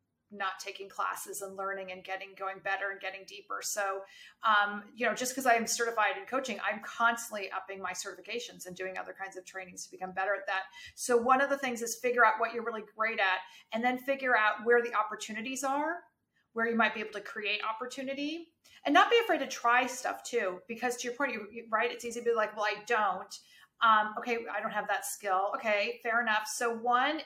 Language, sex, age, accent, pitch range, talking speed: English, female, 40-59, American, 200-245 Hz, 225 wpm